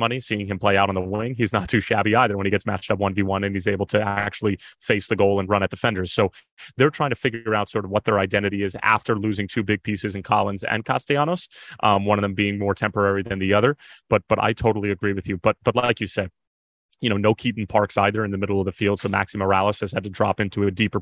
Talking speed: 275 wpm